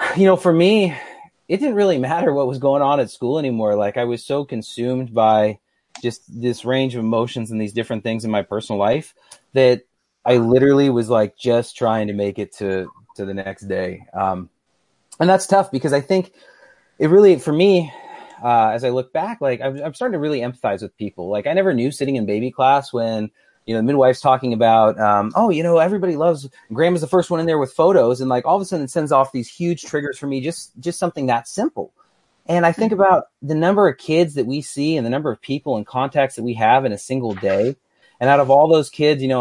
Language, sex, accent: English, male, American